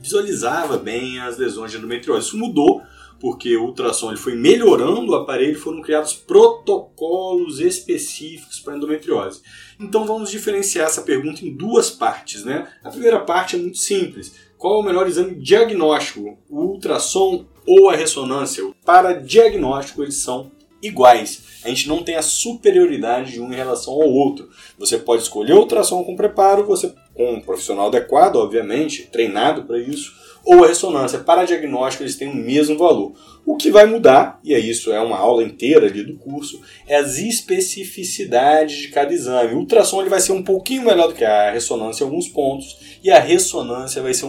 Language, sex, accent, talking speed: Portuguese, male, Brazilian, 180 wpm